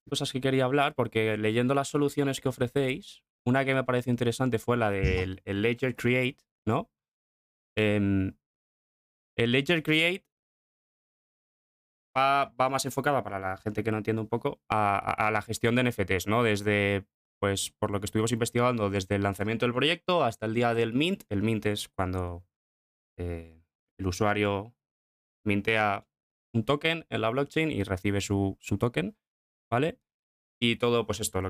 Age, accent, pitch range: 20-39, Spanish, 100-125 Hz